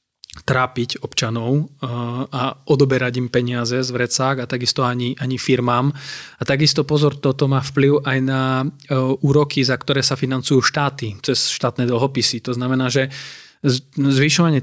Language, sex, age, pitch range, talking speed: Slovak, male, 20-39, 120-140 Hz, 140 wpm